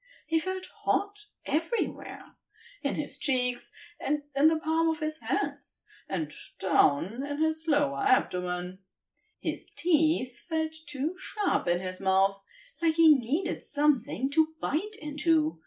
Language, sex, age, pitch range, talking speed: English, female, 30-49, 200-335 Hz, 135 wpm